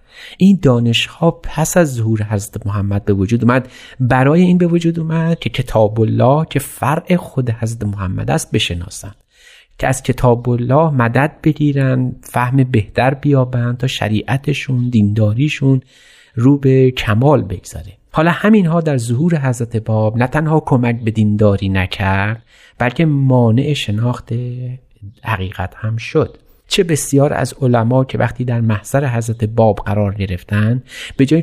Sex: male